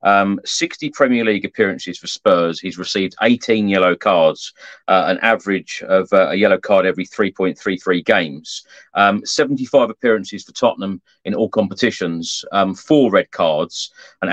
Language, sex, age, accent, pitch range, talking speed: English, male, 40-59, British, 100-130 Hz, 150 wpm